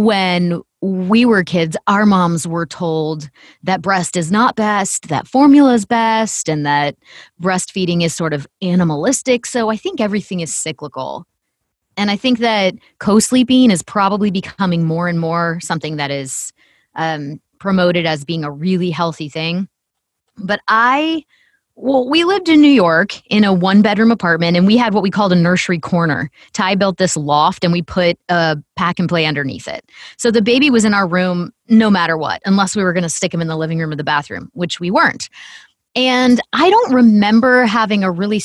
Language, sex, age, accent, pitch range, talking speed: English, female, 30-49, American, 170-220 Hz, 185 wpm